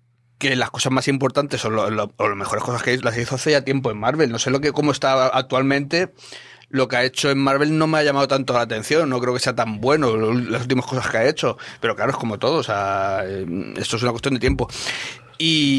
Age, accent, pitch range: 30-49, Spanish, 120-145 Hz